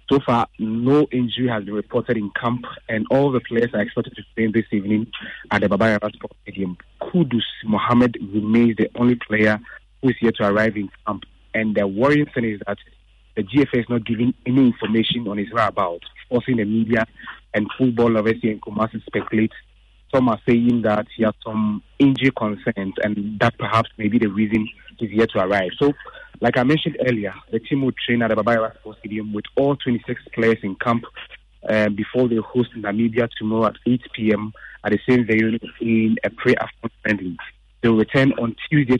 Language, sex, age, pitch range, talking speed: English, male, 30-49, 110-120 Hz, 195 wpm